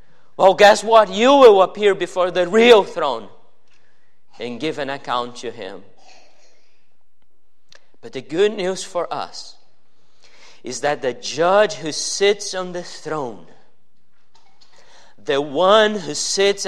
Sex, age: male, 40-59